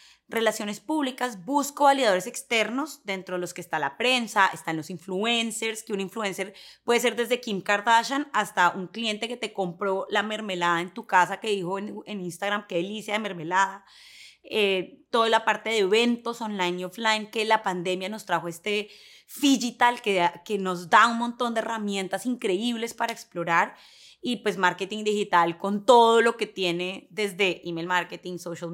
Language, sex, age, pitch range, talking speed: English, female, 20-39, 185-235 Hz, 170 wpm